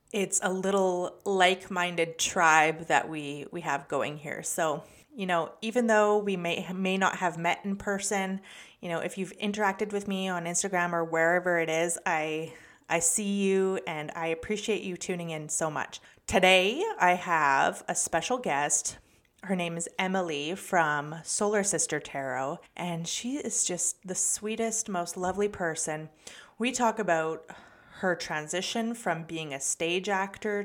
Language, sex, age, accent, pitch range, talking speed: English, female, 30-49, American, 165-200 Hz, 160 wpm